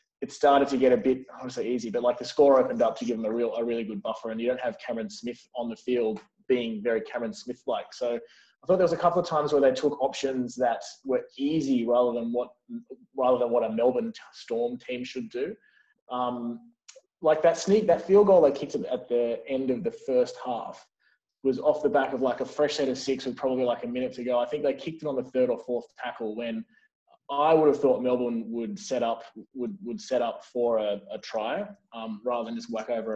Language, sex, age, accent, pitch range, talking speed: English, male, 20-39, Australian, 120-170 Hz, 240 wpm